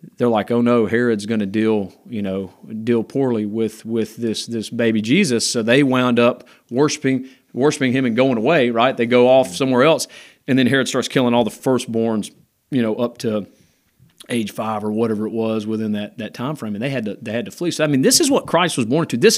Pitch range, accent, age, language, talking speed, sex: 110-130 Hz, American, 40-59, English, 235 wpm, male